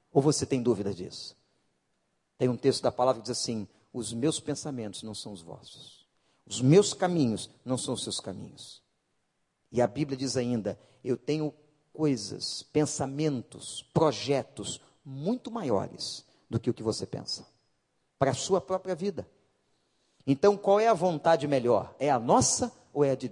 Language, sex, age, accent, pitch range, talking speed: Portuguese, male, 50-69, Brazilian, 135-215 Hz, 165 wpm